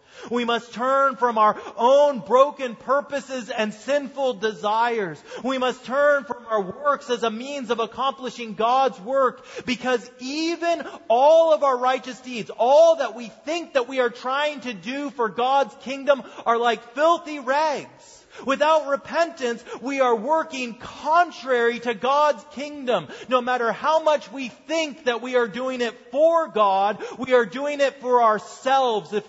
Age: 40-59